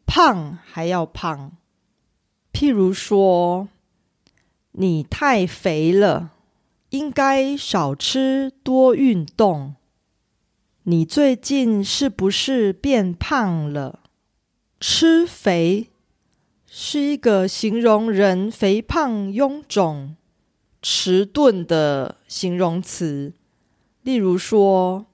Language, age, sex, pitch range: Korean, 30-49, female, 165-230 Hz